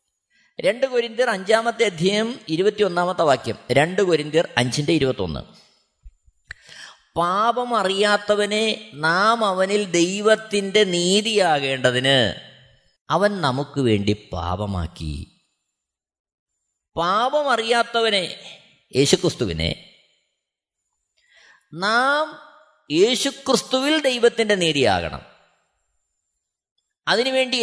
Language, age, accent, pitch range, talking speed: Malayalam, 20-39, native, 145-235 Hz, 55 wpm